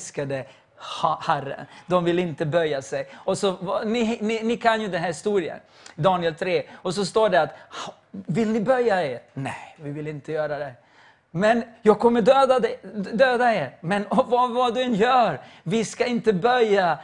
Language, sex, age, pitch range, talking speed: English, male, 30-49, 160-215 Hz, 170 wpm